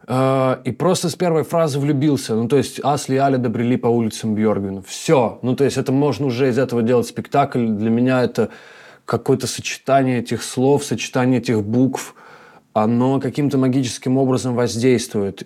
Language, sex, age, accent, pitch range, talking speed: Russian, male, 20-39, native, 115-130 Hz, 165 wpm